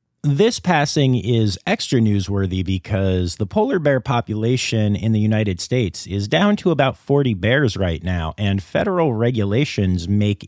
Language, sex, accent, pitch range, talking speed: English, male, American, 100-130 Hz, 150 wpm